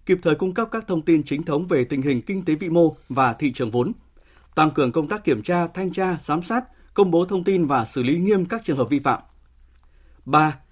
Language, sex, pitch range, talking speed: Vietnamese, male, 140-180 Hz, 245 wpm